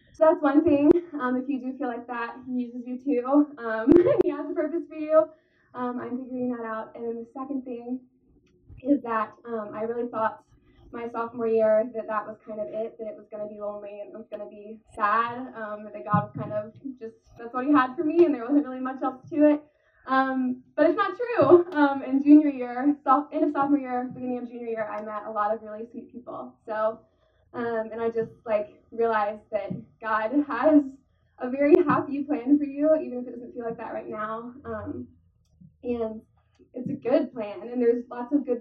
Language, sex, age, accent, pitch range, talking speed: English, female, 10-29, American, 225-290 Hz, 220 wpm